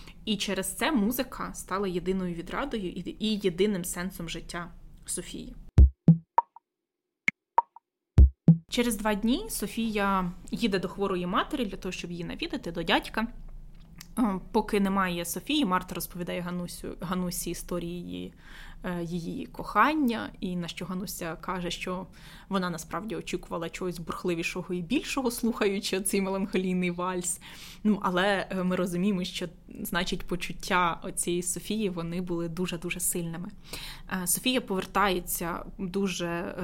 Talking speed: 120 wpm